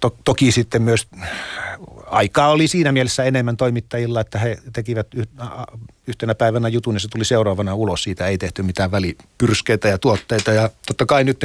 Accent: native